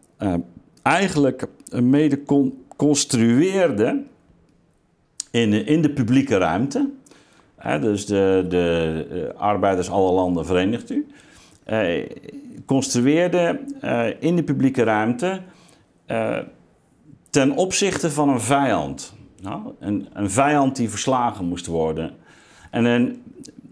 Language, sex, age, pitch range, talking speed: Dutch, male, 50-69, 100-140 Hz, 100 wpm